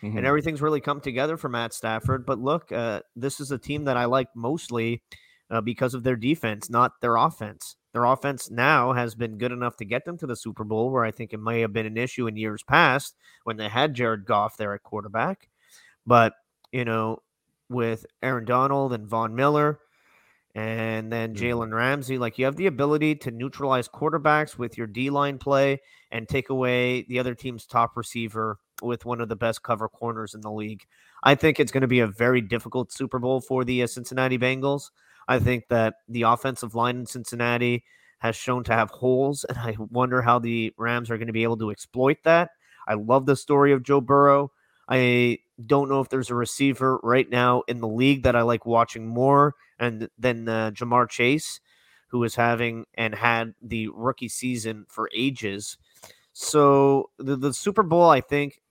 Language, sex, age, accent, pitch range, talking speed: English, male, 30-49, American, 115-135 Hz, 195 wpm